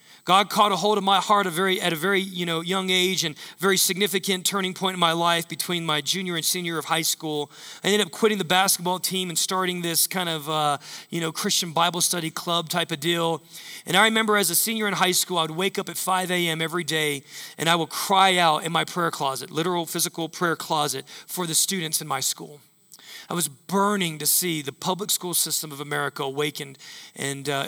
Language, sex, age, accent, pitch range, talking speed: English, male, 40-59, American, 150-185 Hz, 230 wpm